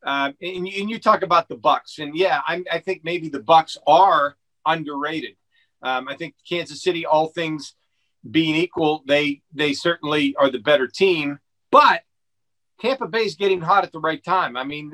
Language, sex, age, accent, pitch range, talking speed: English, male, 50-69, American, 140-180 Hz, 185 wpm